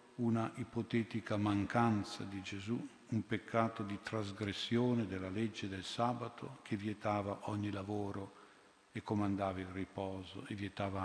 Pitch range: 100-115 Hz